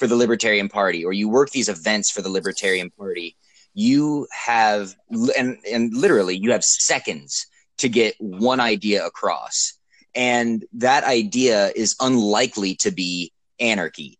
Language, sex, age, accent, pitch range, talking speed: English, male, 20-39, American, 100-130 Hz, 145 wpm